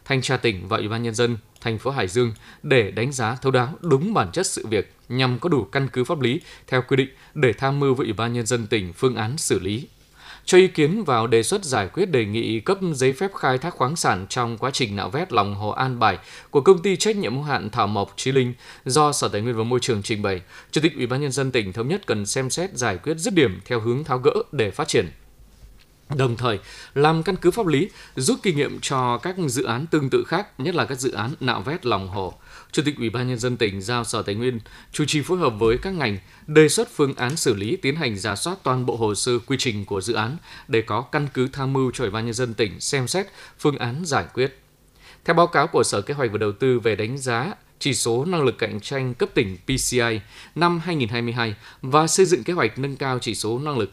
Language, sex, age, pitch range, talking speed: Vietnamese, male, 20-39, 115-145 Hz, 255 wpm